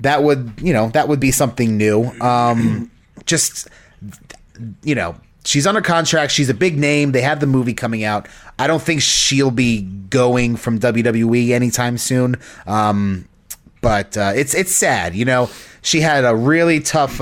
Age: 30-49